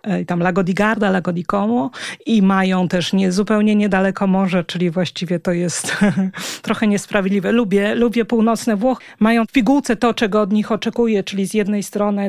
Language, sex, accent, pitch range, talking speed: Polish, female, native, 205-235 Hz, 155 wpm